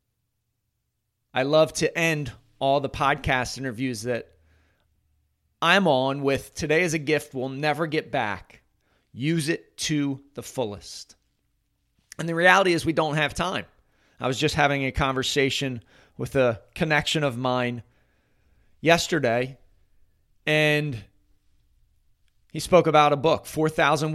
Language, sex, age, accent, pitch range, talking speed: English, male, 30-49, American, 115-150 Hz, 130 wpm